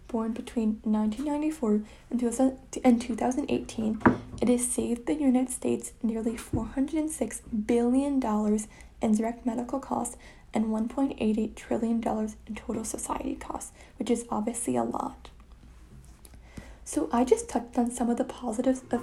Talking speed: 125 wpm